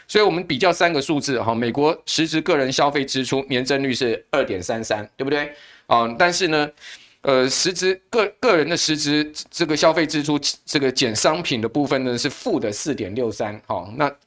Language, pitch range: Chinese, 115-150 Hz